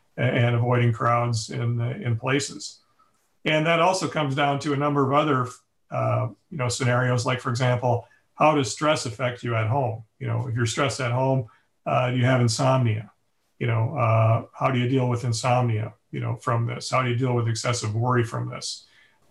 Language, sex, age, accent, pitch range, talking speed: English, male, 40-59, American, 120-135 Hz, 200 wpm